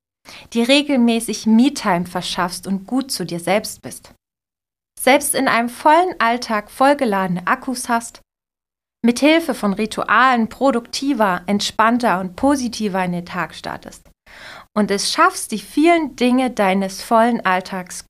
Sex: female